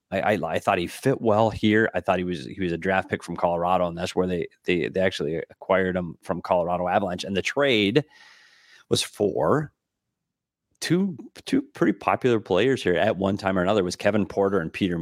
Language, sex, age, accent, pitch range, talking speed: English, male, 30-49, American, 85-100 Hz, 210 wpm